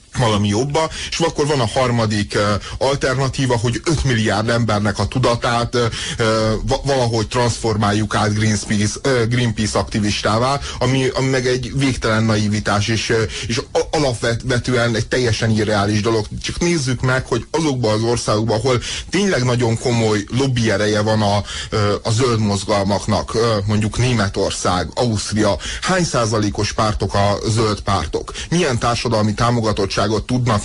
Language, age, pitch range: Hungarian, 30-49, 110-125 Hz